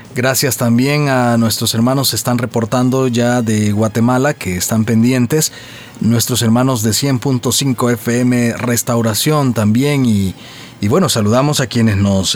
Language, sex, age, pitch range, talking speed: Spanish, male, 40-59, 115-140 Hz, 135 wpm